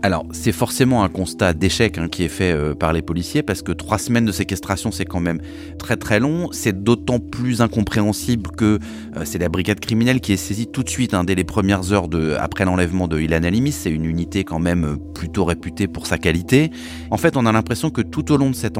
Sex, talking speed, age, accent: male, 235 wpm, 30-49, French